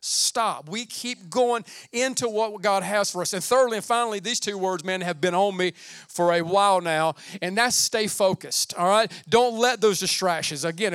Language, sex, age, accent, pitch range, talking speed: English, male, 40-59, American, 180-220 Hz, 205 wpm